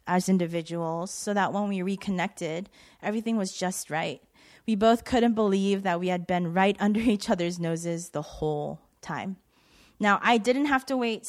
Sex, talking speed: female, 175 wpm